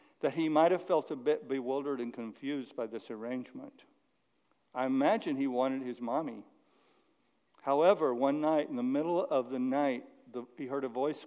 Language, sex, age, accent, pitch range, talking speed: English, male, 60-79, American, 125-155 Hz, 175 wpm